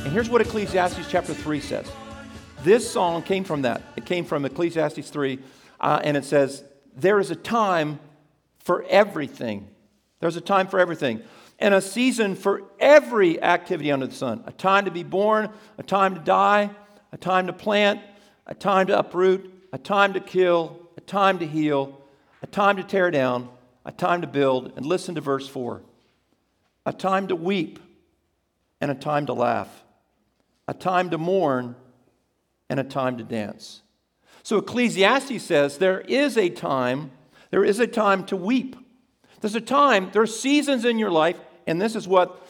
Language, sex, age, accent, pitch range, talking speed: Ukrainian, male, 50-69, American, 150-205 Hz, 175 wpm